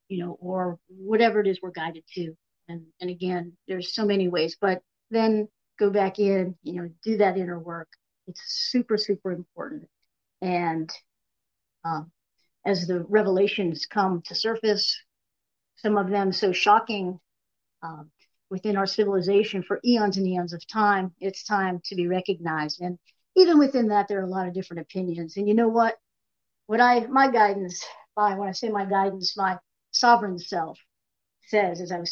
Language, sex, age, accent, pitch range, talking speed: English, female, 50-69, American, 180-215 Hz, 175 wpm